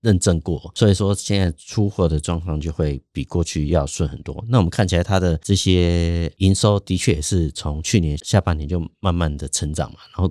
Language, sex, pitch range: Chinese, male, 80-95 Hz